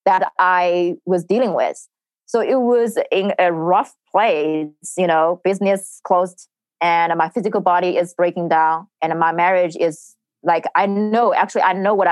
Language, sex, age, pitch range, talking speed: English, female, 20-39, 170-200 Hz, 170 wpm